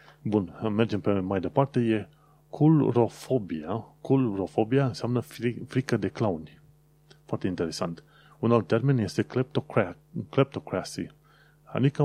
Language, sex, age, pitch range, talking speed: Romanian, male, 30-49, 95-135 Hz, 105 wpm